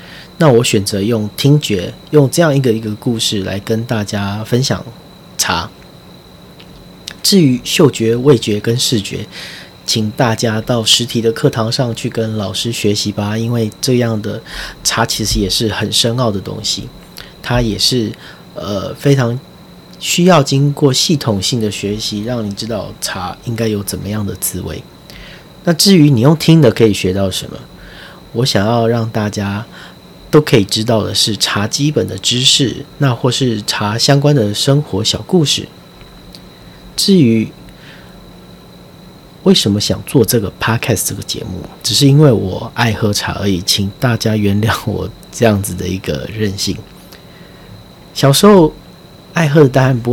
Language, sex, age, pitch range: Chinese, male, 30-49, 105-135 Hz